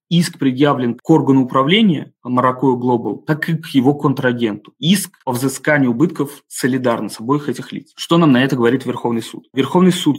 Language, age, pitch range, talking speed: Russian, 20-39, 120-145 Hz, 175 wpm